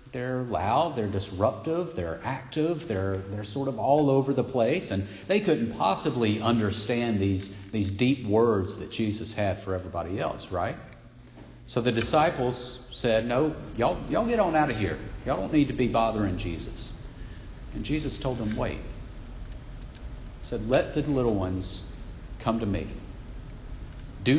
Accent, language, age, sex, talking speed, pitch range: American, English, 40-59, male, 155 wpm, 100-125 Hz